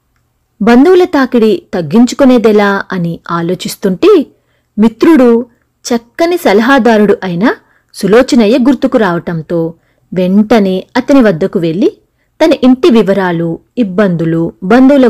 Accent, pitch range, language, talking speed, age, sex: native, 185-265 Hz, Telugu, 80 wpm, 30-49, female